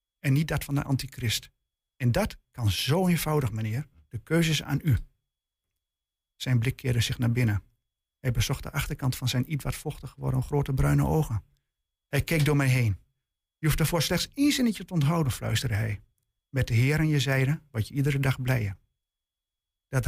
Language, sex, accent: Dutch, male, Dutch